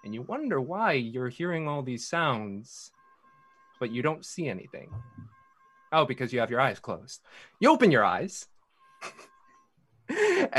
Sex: male